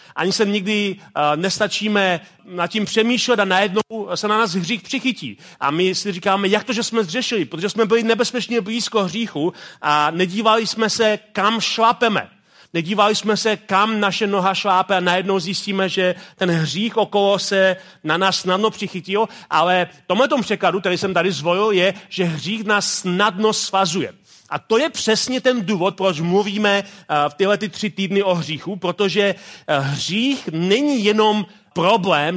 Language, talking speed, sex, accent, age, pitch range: Czech, 165 wpm, male, native, 40-59, 180-215 Hz